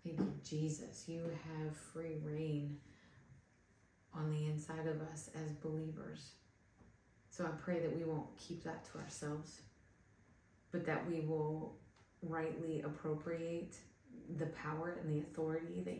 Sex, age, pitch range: female, 30-49, 115-170 Hz